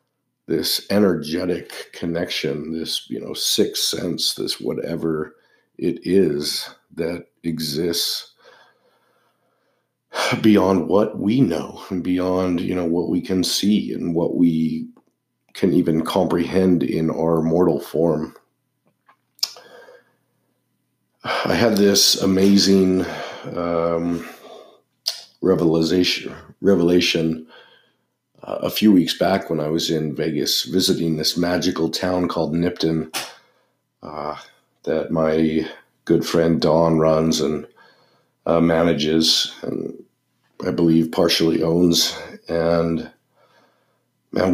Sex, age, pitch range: male, 50-69, 80-90 Hz